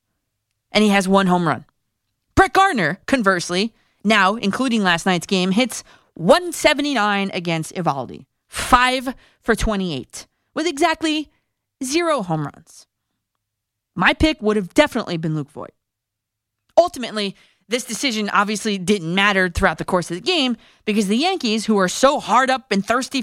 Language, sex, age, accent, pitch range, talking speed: English, female, 30-49, American, 170-255 Hz, 145 wpm